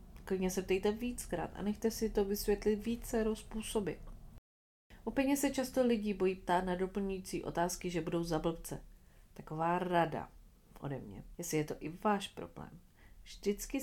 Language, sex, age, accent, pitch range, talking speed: Czech, female, 40-59, native, 175-235 Hz, 150 wpm